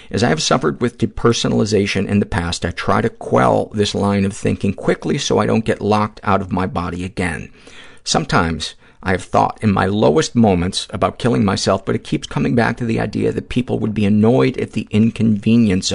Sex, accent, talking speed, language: male, American, 205 wpm, English